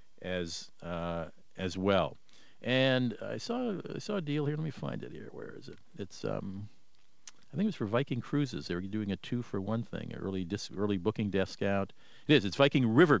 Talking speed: 225 wpm